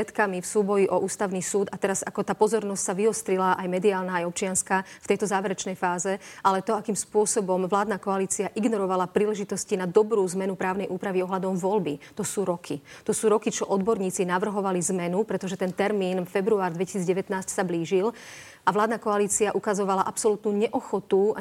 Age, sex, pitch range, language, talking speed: 40-59, female, 185-210 Hz, Slovak, 165 wpm